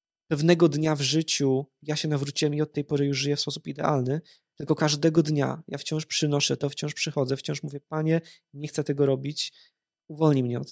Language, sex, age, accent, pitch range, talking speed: Polish, male, 20-39, native, 140-170 Hz, 195 wpm